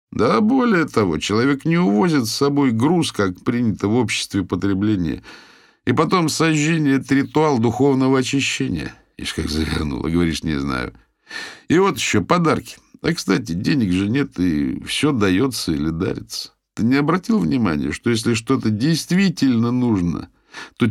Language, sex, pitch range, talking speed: Russian, male, 95-140 Hz, 145 wpm